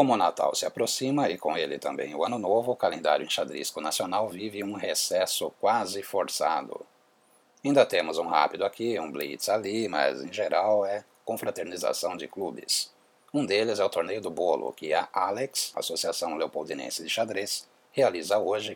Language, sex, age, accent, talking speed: Portuguese, male, 60-79, Brazilian, 170 wpm